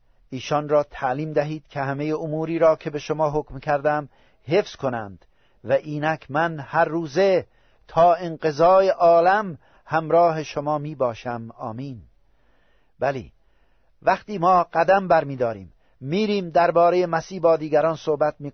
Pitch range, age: 135-175 Hz, 50-69